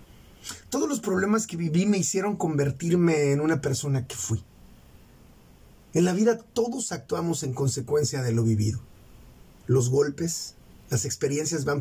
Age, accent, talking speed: 40-59, Mexican, 140 wpm